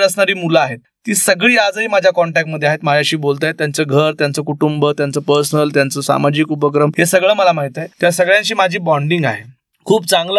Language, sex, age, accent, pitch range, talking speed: Marathi, male, 30-49, native, 150-190 Hz, 120 wpm